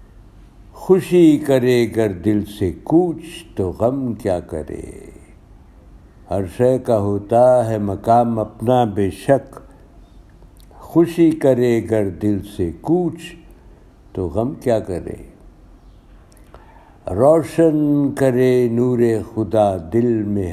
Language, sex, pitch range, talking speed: Urdu, male, 100-125 Hz, 100 wpm